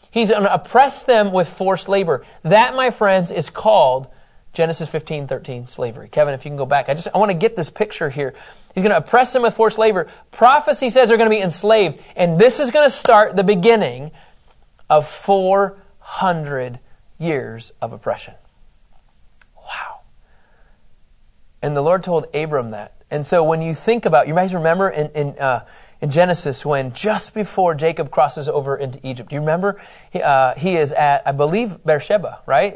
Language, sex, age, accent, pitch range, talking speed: English, male, 30-49, American, 155-210 Hz, 185 wpm